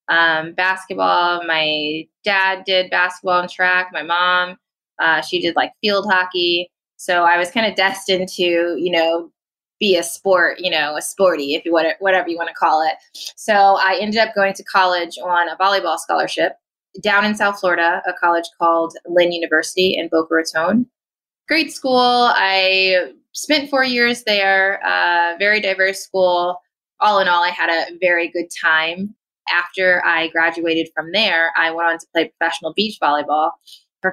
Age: 20-39